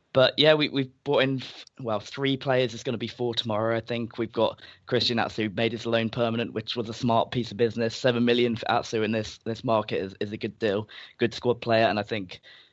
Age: 20-39